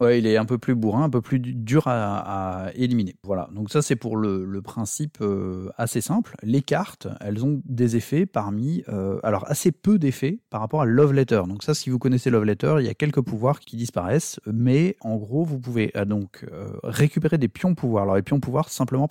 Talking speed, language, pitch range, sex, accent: 230 wpm, French, 105-140 Hz, male, French